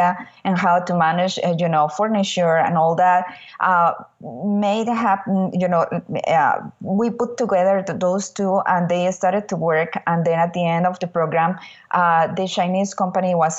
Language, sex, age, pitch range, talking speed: English, female, 20-39, 170-195 Hz, 170 wpm